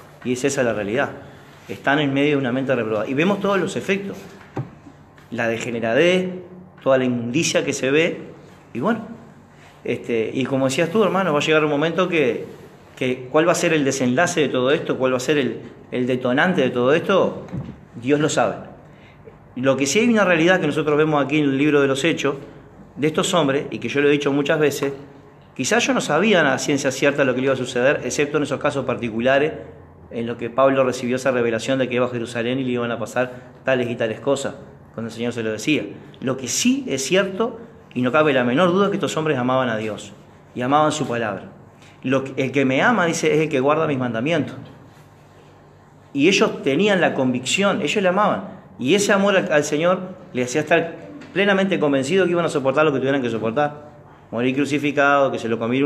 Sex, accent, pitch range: male, Argentinian, 125-155 Hz